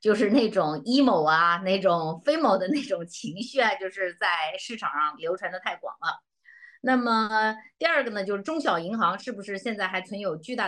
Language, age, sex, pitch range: Chinese, 30-49, female, 190-280 Hz